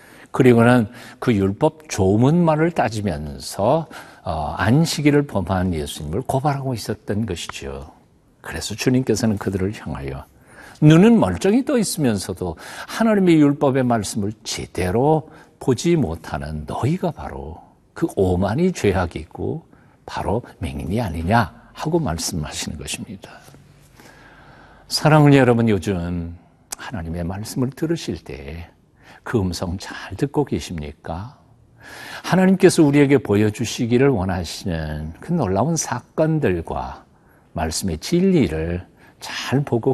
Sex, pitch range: male, 85-135 Hz